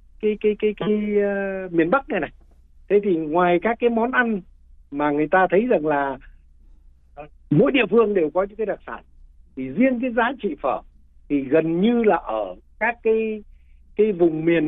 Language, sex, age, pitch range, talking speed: Vietnamese, male, 60-79, 130-210 Hz, 190 wpm